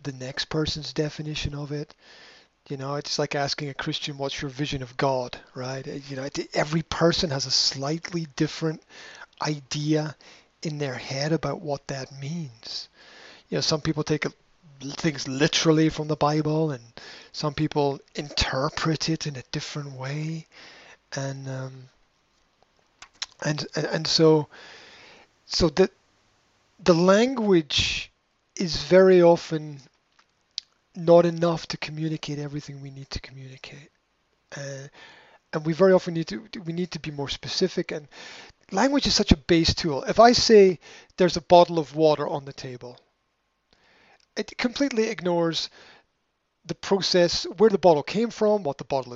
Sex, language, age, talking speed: male, English, 30-49, 150 wpm